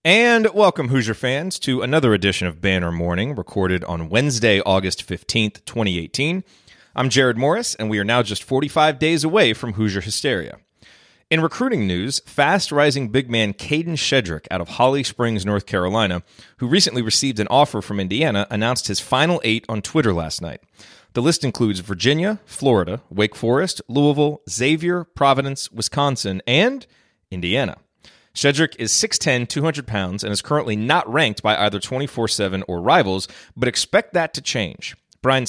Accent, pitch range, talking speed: American, 100-140 Hz, 155 wpm